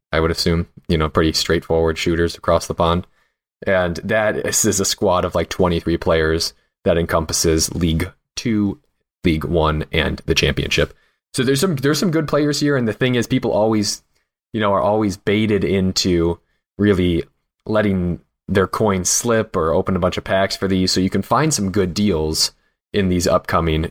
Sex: male